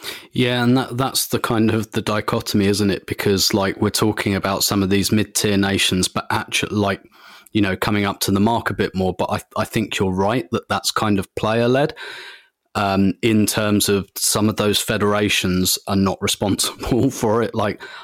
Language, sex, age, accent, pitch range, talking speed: English, male, 30-49, British, 100-115 Hz, 195 wpm